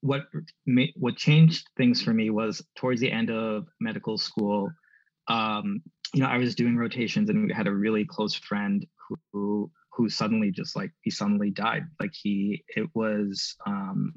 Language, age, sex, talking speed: English, 20-39, male, 175 wpm